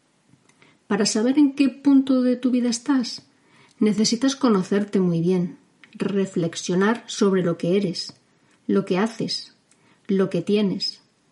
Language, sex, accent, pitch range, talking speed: Spanish, female, Spanish, 190-235 Hz, 125 wpm